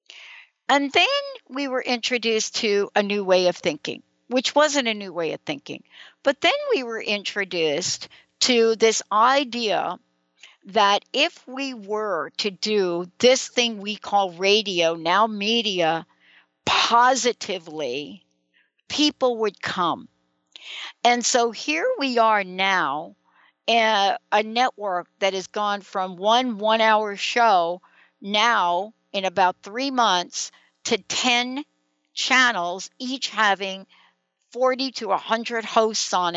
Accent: American